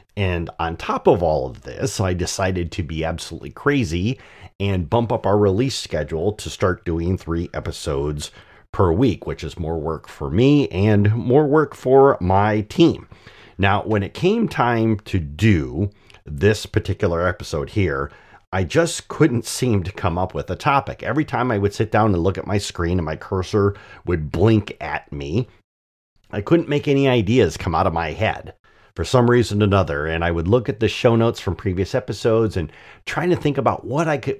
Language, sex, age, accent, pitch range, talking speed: English, male, 40-59, American, 85-110 Hz, 195 wpm